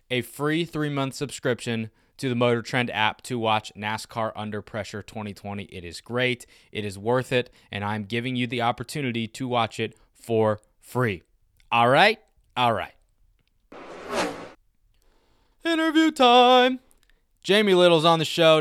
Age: 20-39